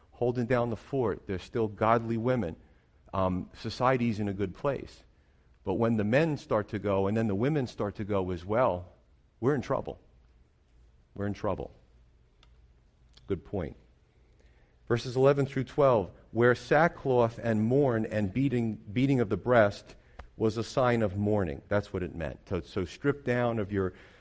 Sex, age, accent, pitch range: male, 50-69, American, 85-110 Hz